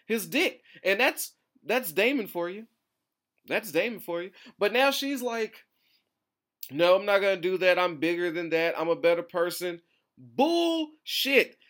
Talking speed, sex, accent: 160 wpm, male, American